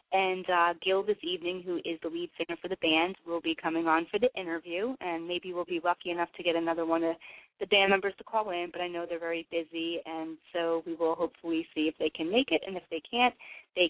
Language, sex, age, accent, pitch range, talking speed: English, female, 20-39, American, 165-190 Hz, 255 wpm